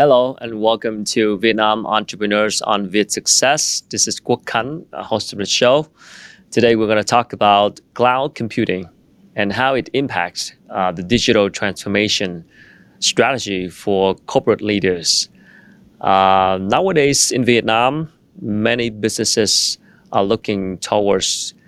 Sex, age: male, 30-49